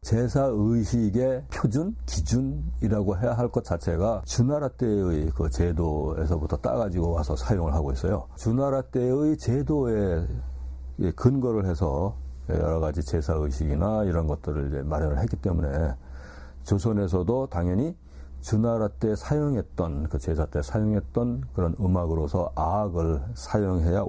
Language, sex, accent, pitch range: Korean, male, native, 75-105 Hz